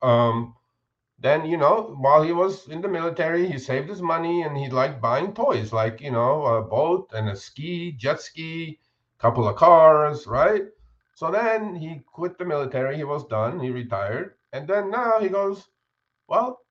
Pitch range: 120-165 Hz